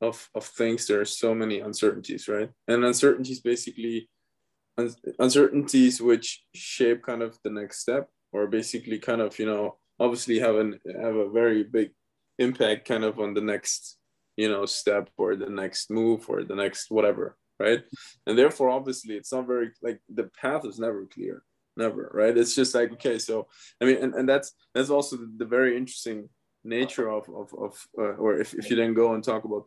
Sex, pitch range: male, 110-130 Hz